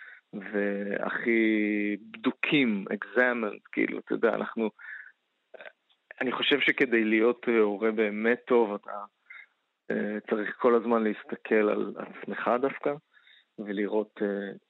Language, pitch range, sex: Hebrew, 105-120 Hz, male